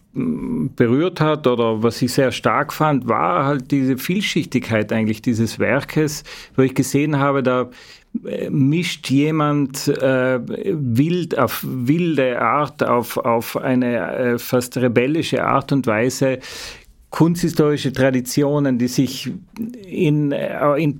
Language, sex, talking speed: German, male, 120 wpm